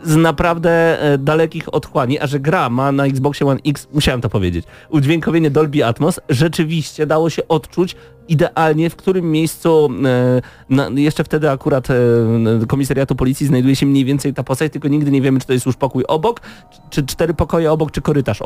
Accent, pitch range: native, 130-170 Hz